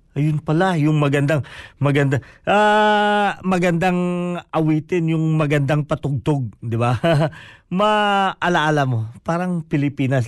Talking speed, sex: 105 wpm, male